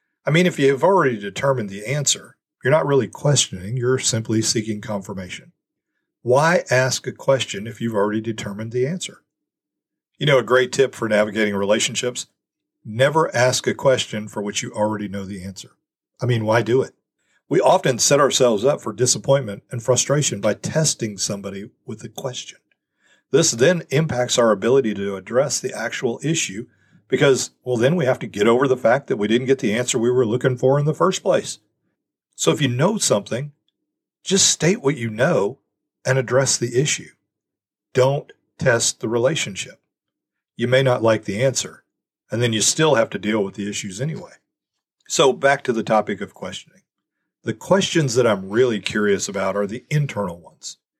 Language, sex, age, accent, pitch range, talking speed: English, male, 40-59, American, 105-135 Hz, 180 wpm